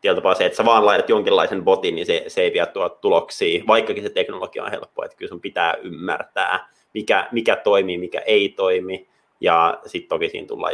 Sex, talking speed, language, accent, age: male, 195 wpm, Finnish, native, 30-49